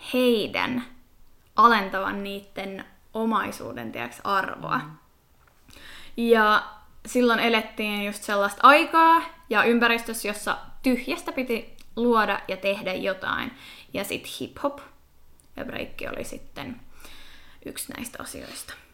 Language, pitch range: Finnish, 205-260 Hz